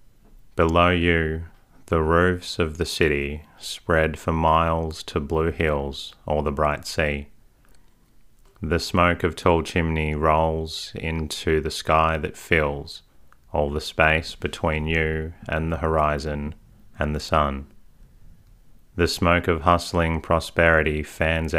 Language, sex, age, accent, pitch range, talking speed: English, male, 30-49, Australian, 75-85 Hz, 125 wpm